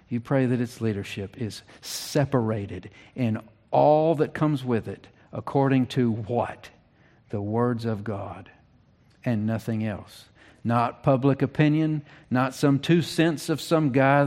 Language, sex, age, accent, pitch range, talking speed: English, male, 50-69, American, 115-150 Hz, 140 wpm